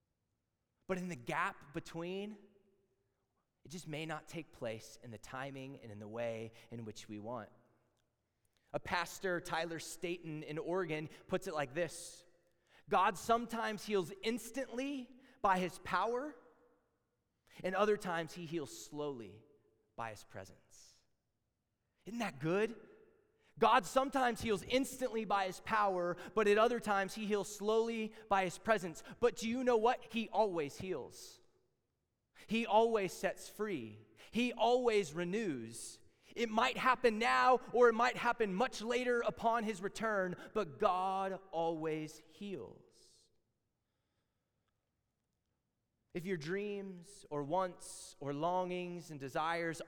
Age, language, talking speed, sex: 20-39, English, 130 wpm, male